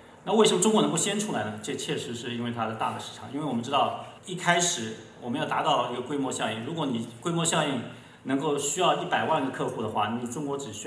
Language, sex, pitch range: Chinese, male, 110-140 Hz